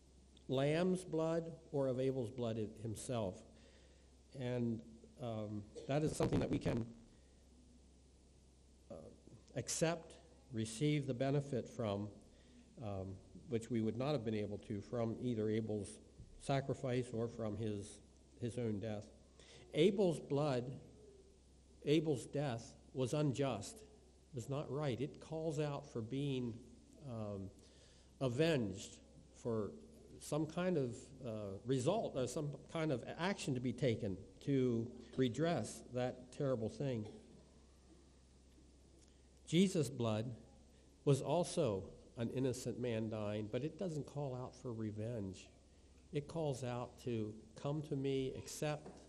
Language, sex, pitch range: English, male, 100-135 Hz